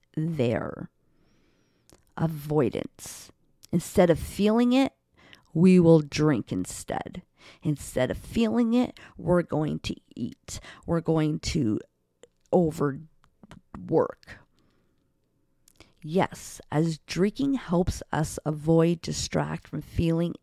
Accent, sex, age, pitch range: American, female, 50-69, 135-175 Hz